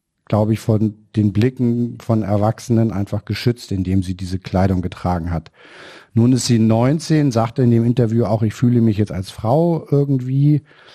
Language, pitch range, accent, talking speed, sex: German, 105-135 Hz, German, 170 wpm, male